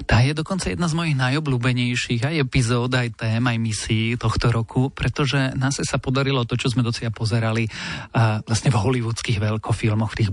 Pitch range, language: 115-135 Hz, Slovak